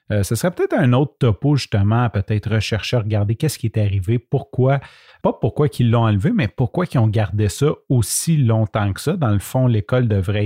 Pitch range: 105-135 Hz